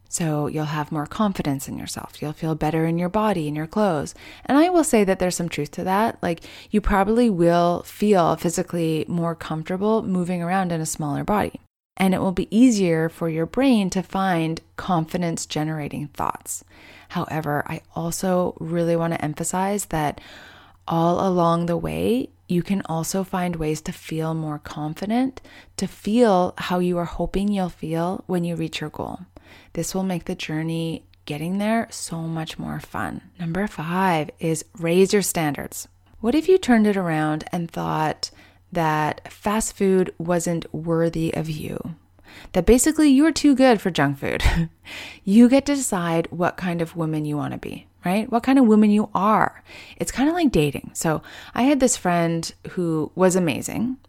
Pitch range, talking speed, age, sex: 160-195 Hz, 175 wpm, 30-49, female